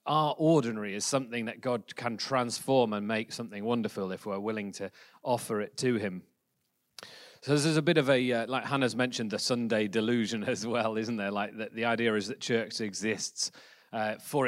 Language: English